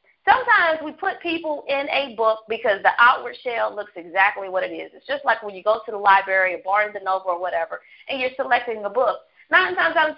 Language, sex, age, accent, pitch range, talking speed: English, female, 40-59, American, 230-305 Hz, 230 wpm